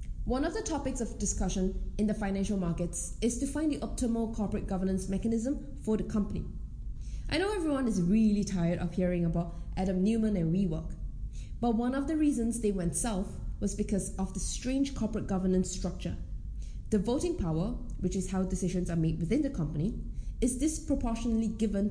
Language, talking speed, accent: English, 180 wpm, Malaysian